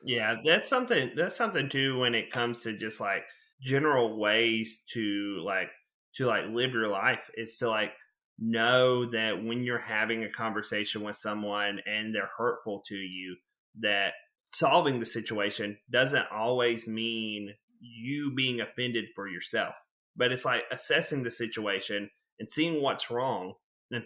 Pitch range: 105-125 Hz